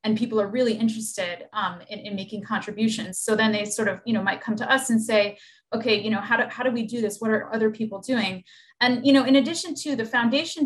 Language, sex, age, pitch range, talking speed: English, female, 20-39, 205-235 Hz, 255 wpm